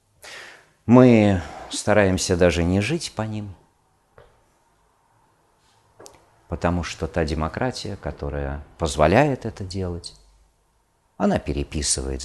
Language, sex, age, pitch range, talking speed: Russian, male, 50-69, 80-110 Hz, 85 wpm